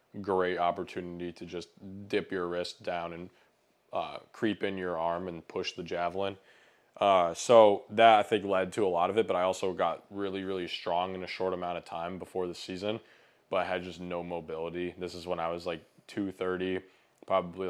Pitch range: 85-95 Hz